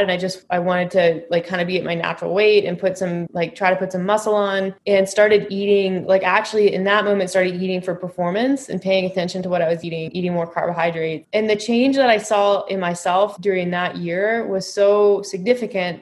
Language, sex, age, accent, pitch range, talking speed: English, female, 20-39, American, 180-210 Hz, 230 wpm